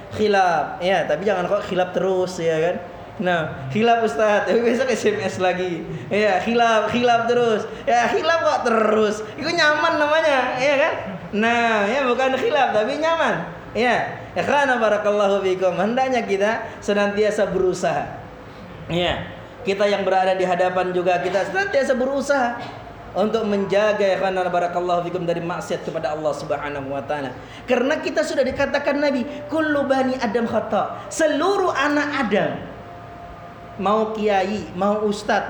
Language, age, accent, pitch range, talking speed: Indonesian, 20-39, native, 185-240 Hz, 135 wpm